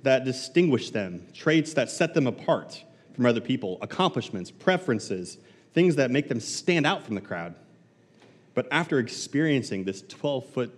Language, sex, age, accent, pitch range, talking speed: English, male, 30-49, American, 100-130 Hz, 150 wpm